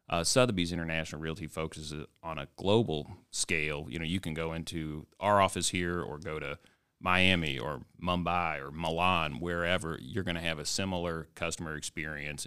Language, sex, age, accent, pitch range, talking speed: English, male, 30-49, American, 80-90 Hz, 170 wpm